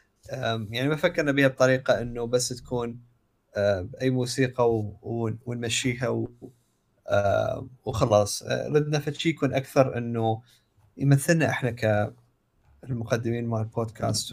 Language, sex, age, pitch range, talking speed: Arabic, male, 20-39, 115-135 Hz, 100 wpm